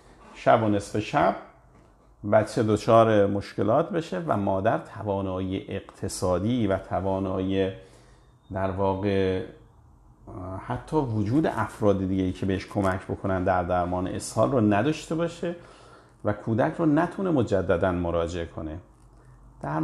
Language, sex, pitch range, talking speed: Persian, male, 95-120 Hz, 110 wpm